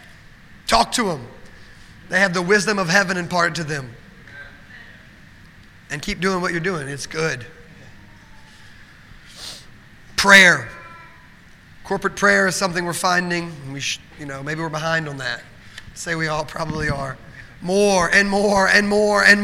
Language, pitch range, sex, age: English, 160-205 Hz, male, 30-49